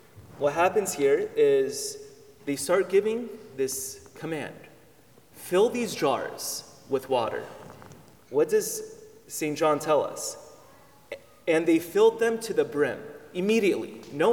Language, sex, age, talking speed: English, male, 30-49, 120 wpm